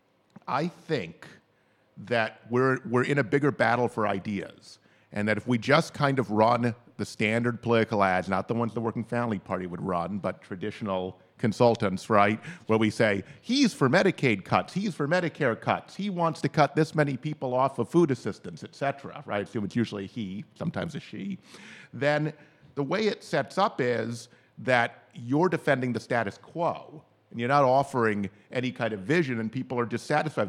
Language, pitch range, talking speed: English, 110-135 Hz, 185 wpm